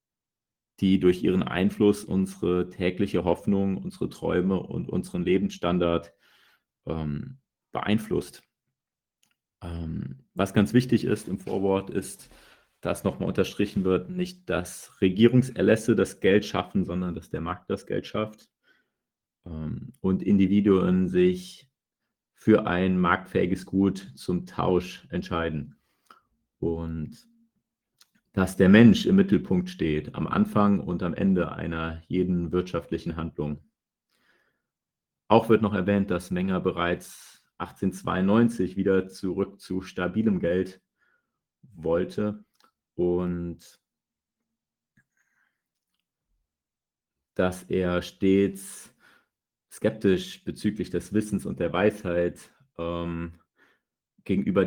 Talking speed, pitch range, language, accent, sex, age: 100 wpm, 85-100 Hz, German, German, male, 40-59